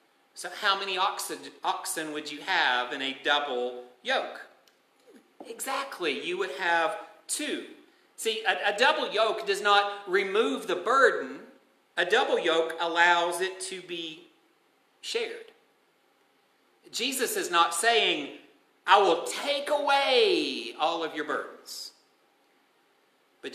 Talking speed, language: 120 wpm, English